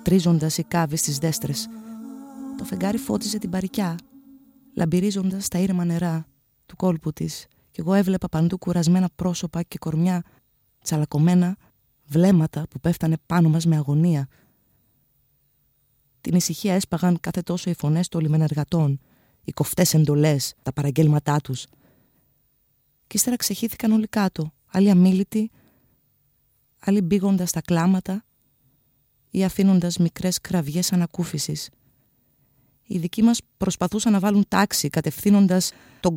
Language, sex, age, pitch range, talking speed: Greek, female, 20-39, 150-190 Hz, 120 wpm